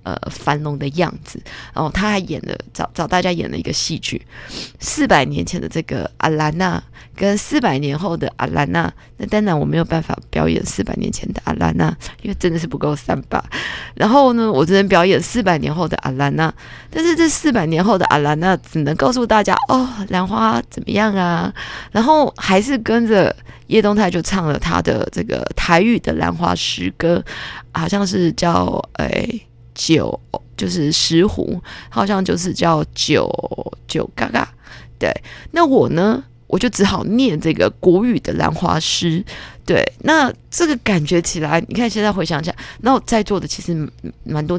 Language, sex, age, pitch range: Chinese, female, 20-39, 150-210 Hz